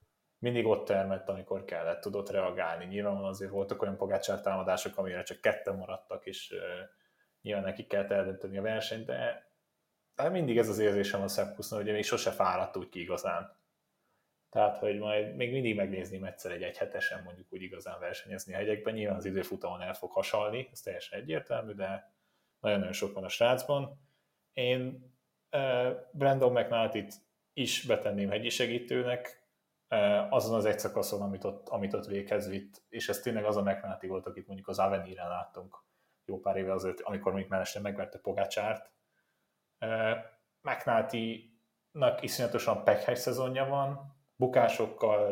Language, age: Hungarian, 20-39